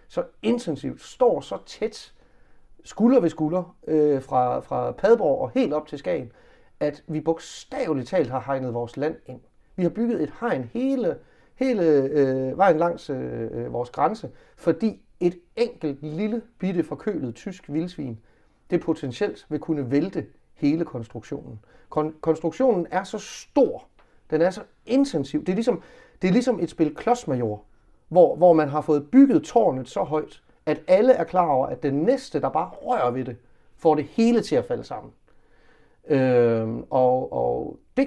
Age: 30-49